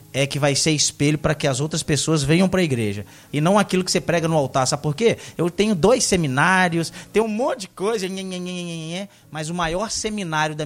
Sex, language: male, Portuguese